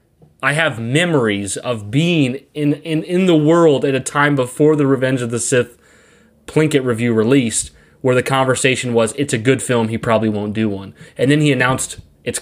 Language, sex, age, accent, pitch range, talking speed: English, male, 20-39, American, 115-145 Hz, 195 wpm